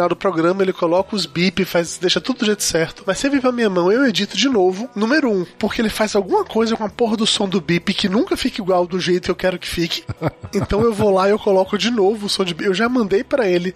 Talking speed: 290 wpm